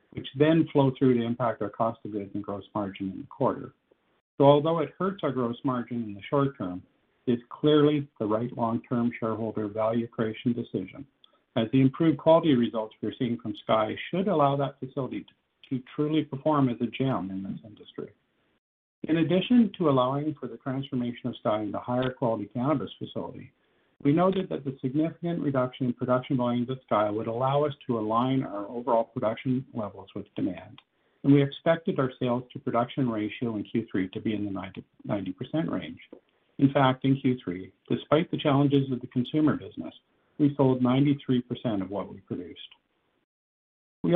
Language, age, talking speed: English, 50-69, 180 wpm